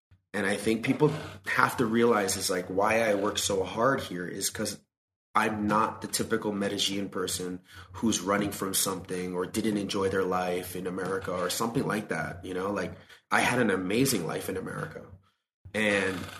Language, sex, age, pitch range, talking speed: English, male, 30-49, 95-105 Hz, 180 wpm